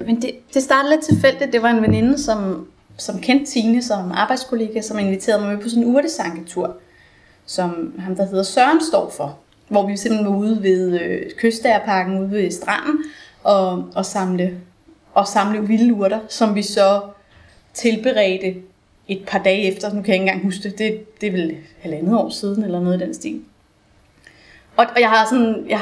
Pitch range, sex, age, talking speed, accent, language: 195-235 Hz, female, 20-39, 185 wpm, native, Danish